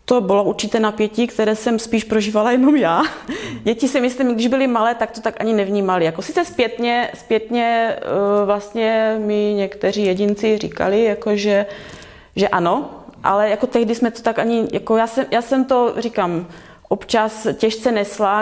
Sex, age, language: female, 30-49, Czech